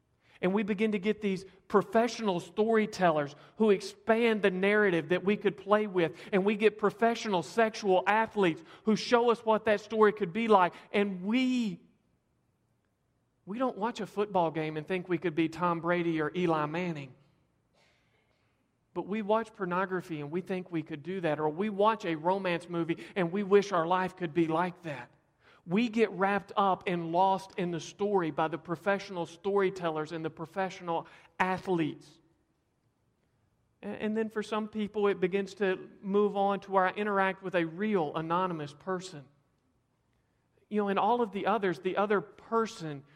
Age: 40-59